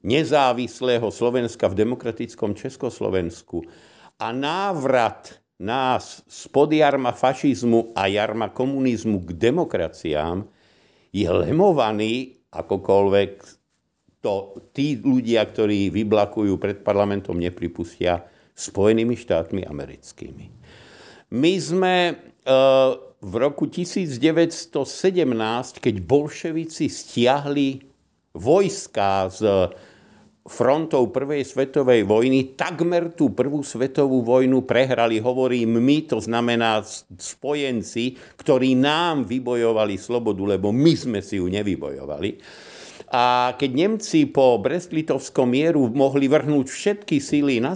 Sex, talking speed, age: male, 95 wpm, 50-69